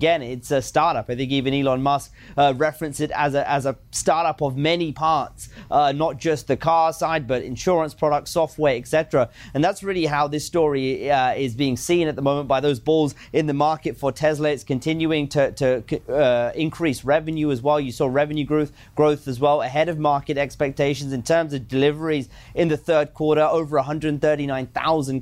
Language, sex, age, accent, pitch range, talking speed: English, male, 30-49, British, 135-155 Hz, 195 wpm